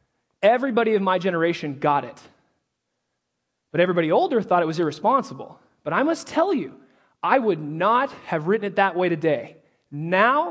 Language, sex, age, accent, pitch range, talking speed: English, male, 30-49, American, 165-235 Hz, 160 wpm